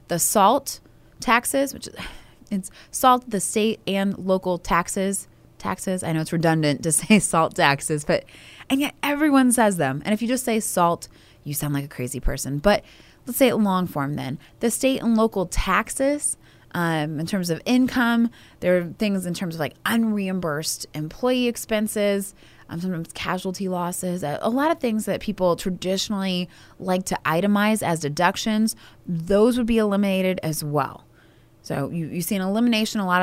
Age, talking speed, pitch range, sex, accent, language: 20-39, 170 wpm, 160-210 Hz, female, American, English